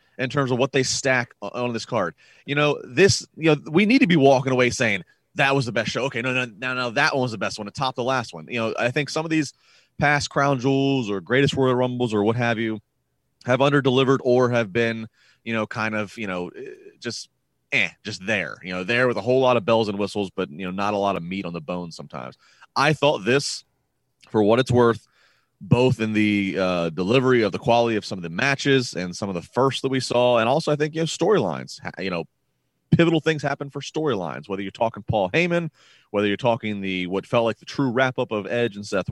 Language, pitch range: English, 105-135 Hz